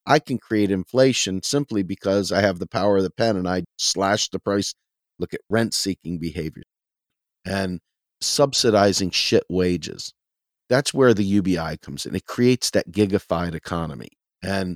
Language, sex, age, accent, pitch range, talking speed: English, male, 50-69, American, 90-115 Hz, 160 wpm